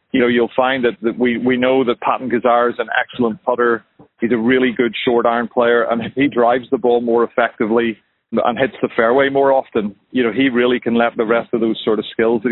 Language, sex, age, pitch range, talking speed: English, male, 40-59, 115-130 Hz, 240 wpm